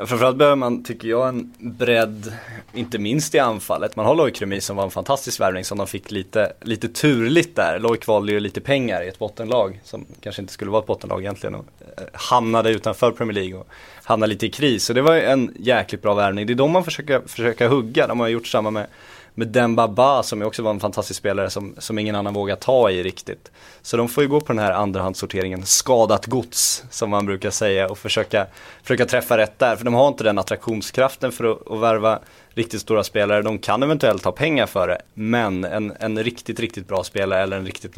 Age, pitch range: 20-39, 95-120 Hz